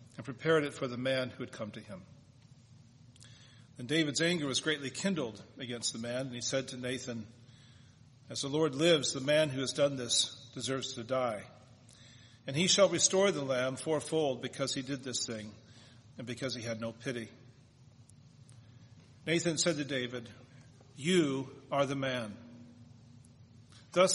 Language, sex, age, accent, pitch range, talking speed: English, male, 40-59, American, 125-160 Hz, 160 wpm